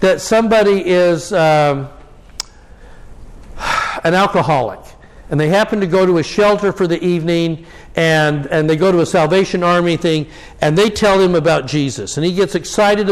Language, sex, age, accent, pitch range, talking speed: English, male, 60-79, American, 165-205 Hz, 165 wpm